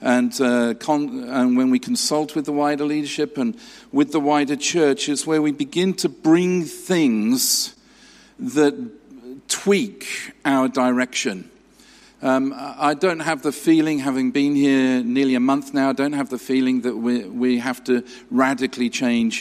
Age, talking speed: 50-69, 160 wpm